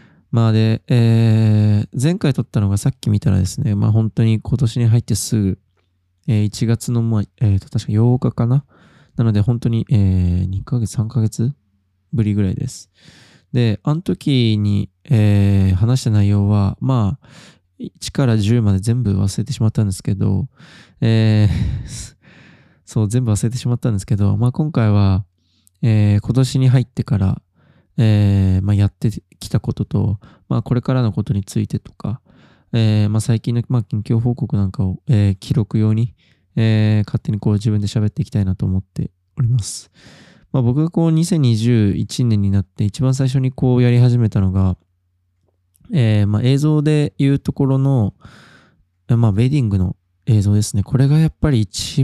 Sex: male